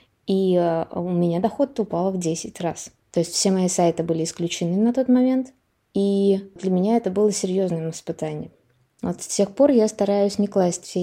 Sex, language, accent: female, Russian, native